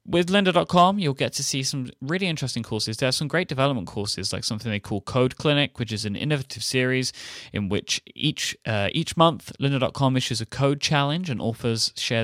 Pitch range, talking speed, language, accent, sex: 105-145 Hz, 200 wpm, English, British, male